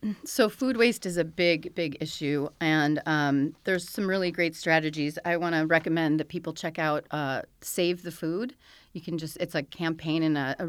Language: English